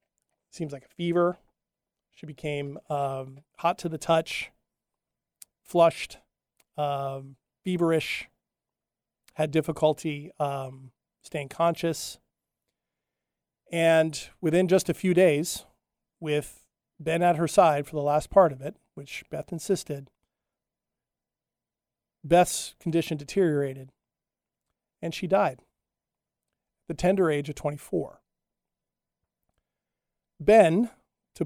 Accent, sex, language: American, male, English